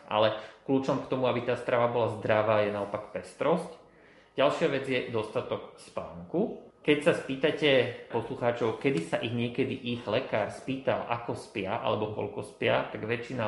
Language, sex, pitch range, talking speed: Slovak, male, 110-130 Hz, 155 wpm